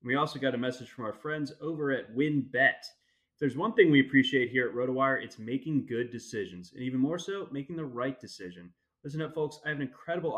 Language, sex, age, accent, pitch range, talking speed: English, male, 20-39, American, 125-155 Hz, 225 wpm